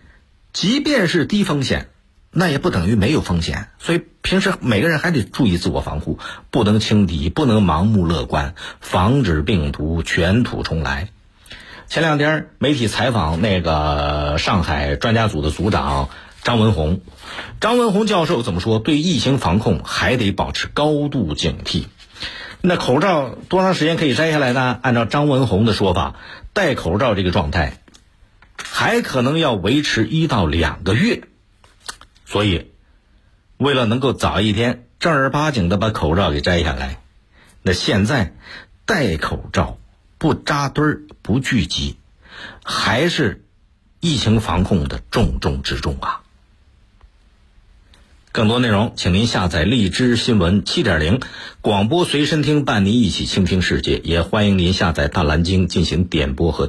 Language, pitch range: Chinese, 80-125 Hz